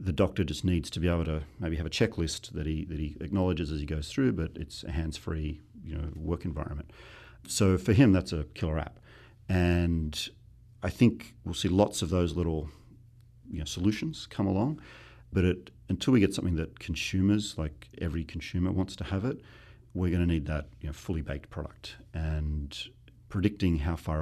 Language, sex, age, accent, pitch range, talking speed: English, male, 40-59, Australian, 80-100 Hz, 195 wpm